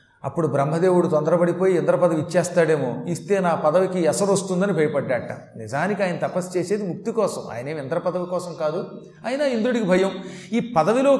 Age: 30-49